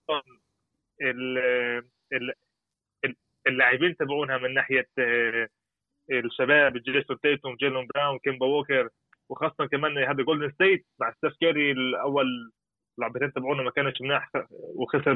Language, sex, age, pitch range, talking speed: Arabic, male, 30-49, 130-170 Hz, 115 wpm